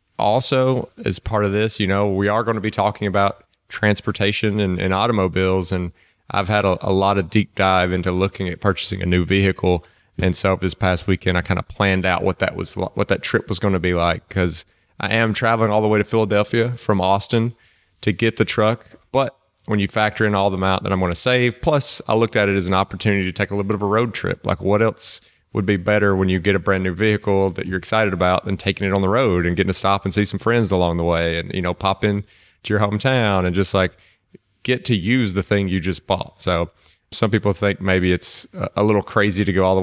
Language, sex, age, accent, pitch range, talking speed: English, male, 30-49, American, 95-110 Hz, 250 wpm